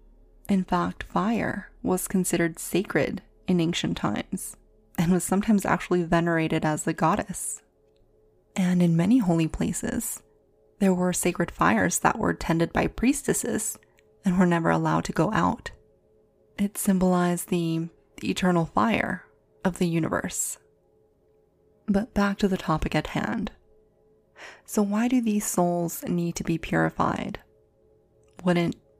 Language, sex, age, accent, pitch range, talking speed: English, female, 20-39, American, 165-195 Hz, 130 wpm